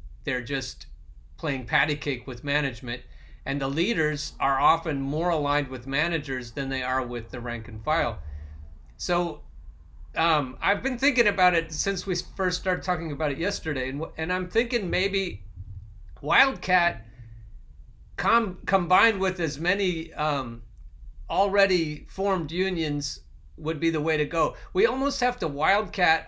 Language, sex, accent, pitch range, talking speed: English, male, American, 125-185 Hz, 150 wpm